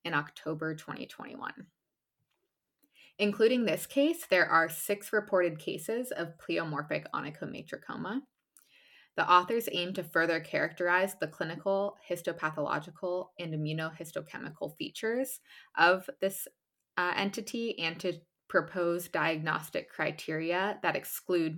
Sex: female